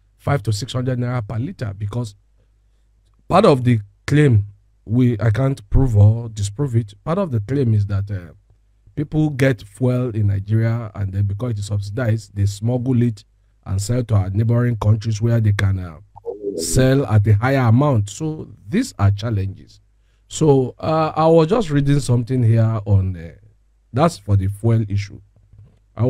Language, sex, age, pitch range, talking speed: English, male, 50-69, 105-130 Hz, 170 wpm